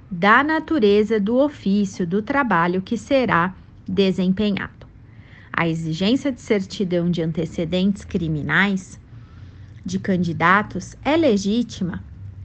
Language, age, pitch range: Portuguese, 40-59, 175-215 Hz